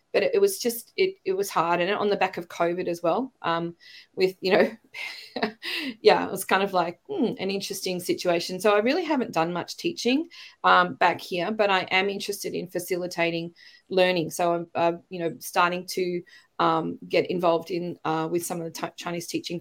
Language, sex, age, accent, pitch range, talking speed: English, female, 20-39, Australian, 170-215 Hz, 200 wpm